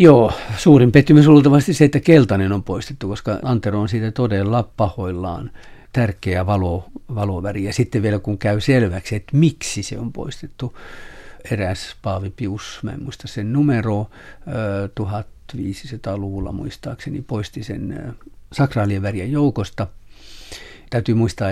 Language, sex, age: Finnish, male, 60-79